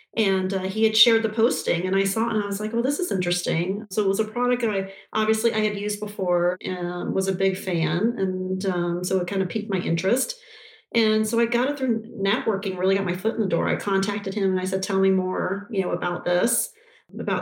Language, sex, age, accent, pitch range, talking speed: English, female, 40-59, American, 180-215 Hz, 250 wpm